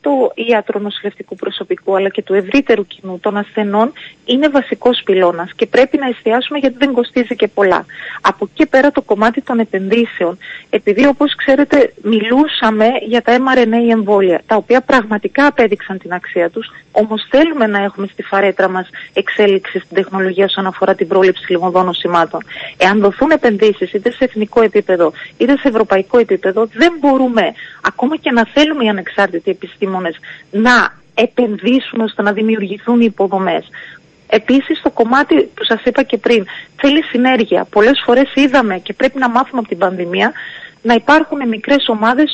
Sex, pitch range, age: female, 205-265 Hz, 30-49